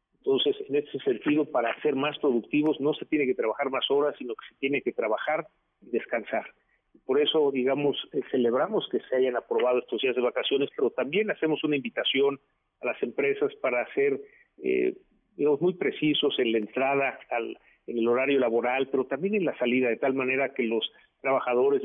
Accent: Mexican